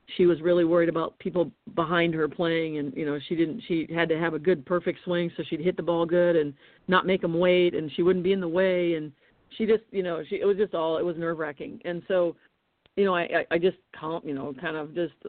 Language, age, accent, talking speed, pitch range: English, 40-59, American, 255 wpm, 165-190 Hz